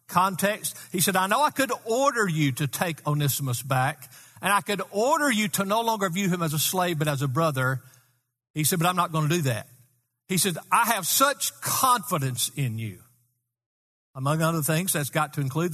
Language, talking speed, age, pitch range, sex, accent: English, 205 wpm, 50-69, 130-195 Hz, male, American